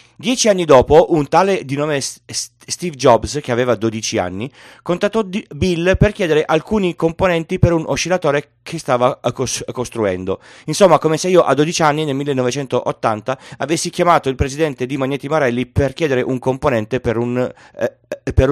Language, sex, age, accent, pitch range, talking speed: Italian, male, 30-49, native, 120-165 Hz, 160 wpm